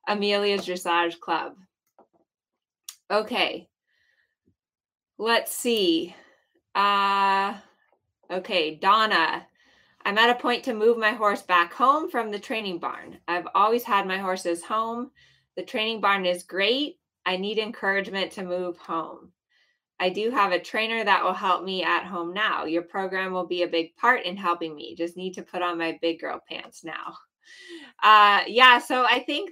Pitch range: 175-220 Hz